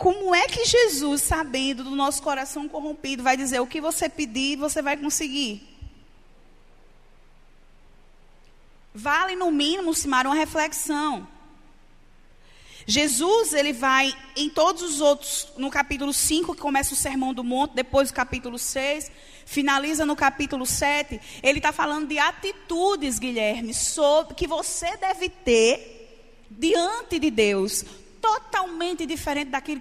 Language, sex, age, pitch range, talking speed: Portuguese, female, 20-39, 265-330 Hz, 130 wpm